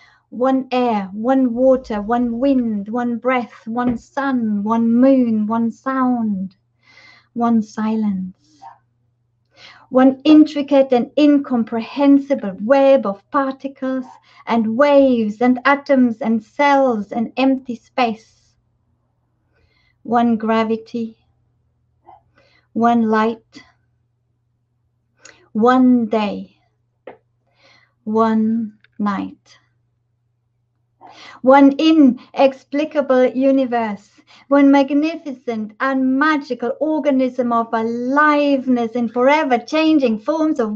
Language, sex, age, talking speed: English, female, 50-69, 80 wpm